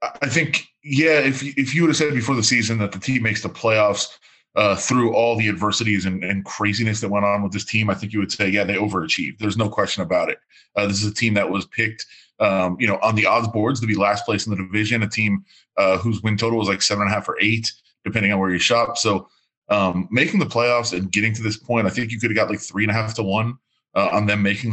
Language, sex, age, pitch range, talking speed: English, male, 20-39, 100-125 Hz, 275 wpm